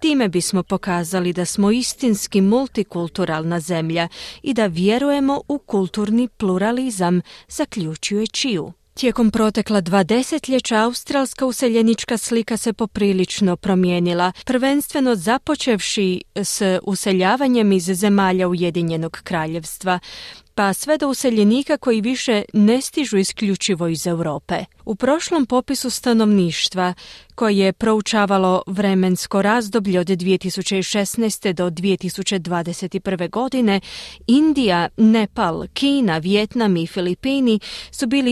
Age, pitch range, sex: 30-49, 180-240 Hz, female